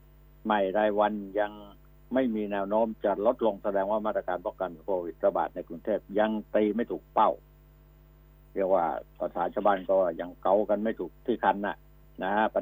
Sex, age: male, 60-79